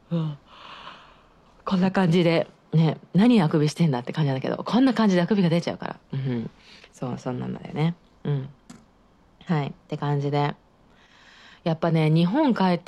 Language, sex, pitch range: Japanese, female, 145-210 Hz